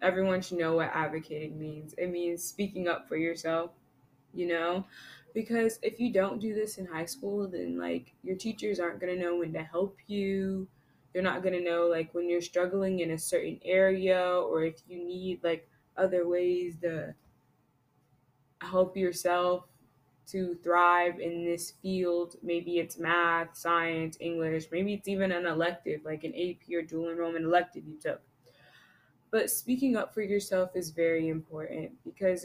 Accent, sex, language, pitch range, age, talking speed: American, female, English, 165-190 Hz, 20-39, 170 wpm